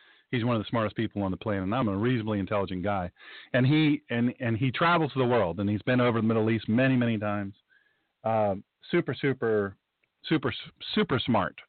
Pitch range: 110-150 Hz